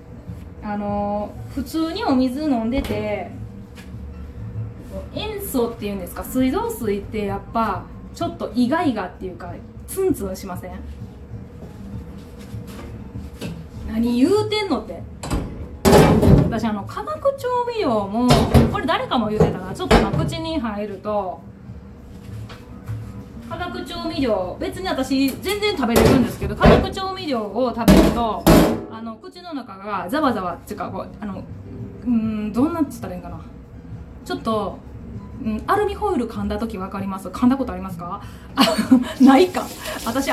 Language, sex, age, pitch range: Japanese, female, 20-39, 205-305 Hz